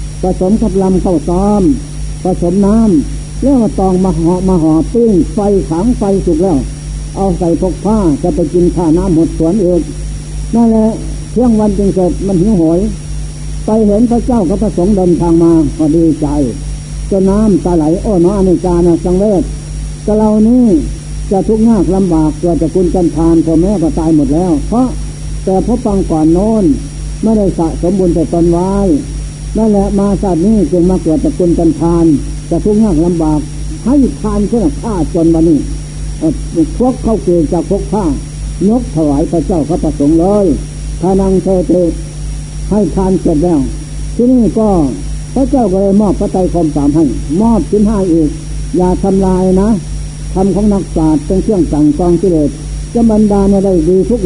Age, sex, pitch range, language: 60-79, male, 160-200 Hz, Thai